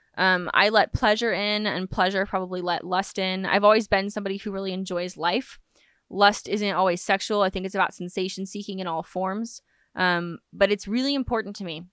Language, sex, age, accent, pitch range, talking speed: English, female, 20-39, American, 180-210 Hz, 195 wpm